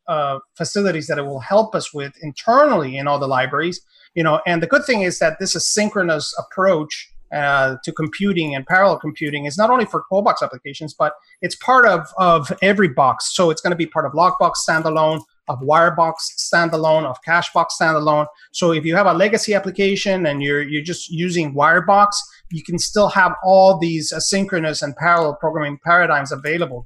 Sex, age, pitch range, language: male, 30-49, 150-190 Hz, English